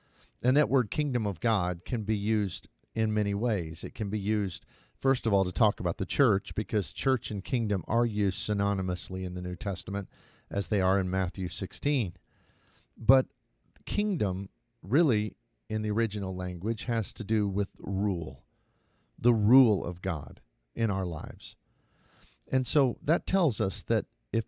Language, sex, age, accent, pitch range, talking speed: English, male, 50-69, American, 95-115 Hz, 165 wpm